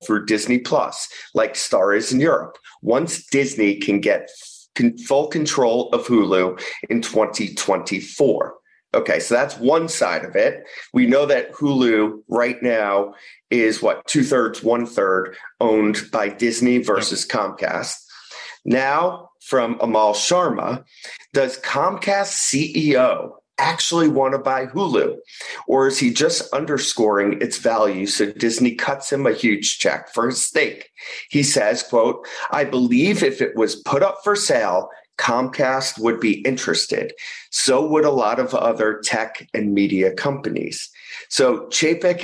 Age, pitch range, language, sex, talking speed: 30-49, 110-160 Hz, English, male, 140 wpm